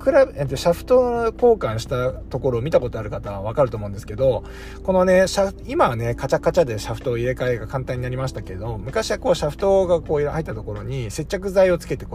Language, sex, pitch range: Japanese, male, 110-165 Hz